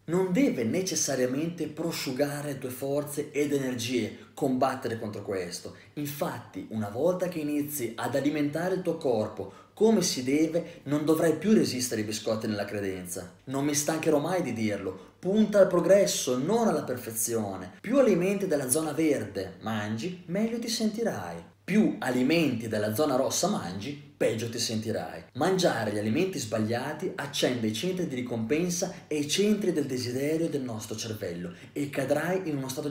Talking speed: 155 wpm